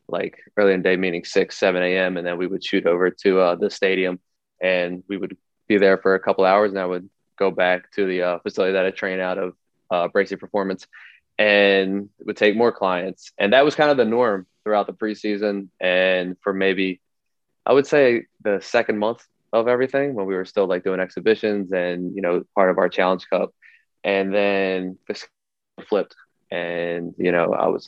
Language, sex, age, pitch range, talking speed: English, male, 20-39, 90-100 Hz, 210 wpm